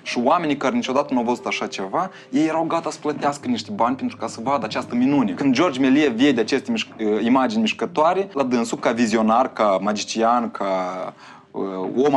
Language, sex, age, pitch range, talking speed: Romanian, male, 20-39, 130-195 Hz, 190 wpm